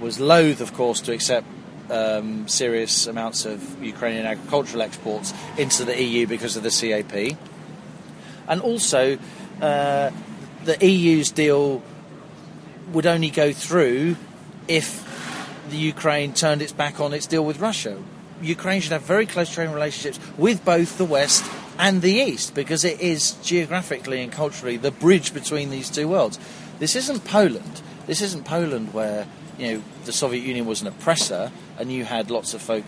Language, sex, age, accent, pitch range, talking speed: English, male, 40-59, British, 125-175 Hz, 160 wpm